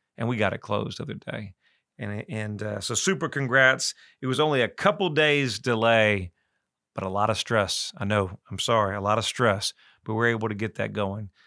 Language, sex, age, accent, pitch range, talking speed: English, male, 40-59, American, 105-135 Hz, 215 wpm